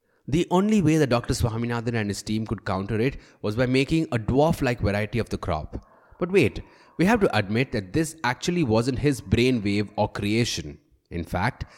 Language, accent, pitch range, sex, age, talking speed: English, Indian, 105-140 Hz, male, 20-39, 190 wpm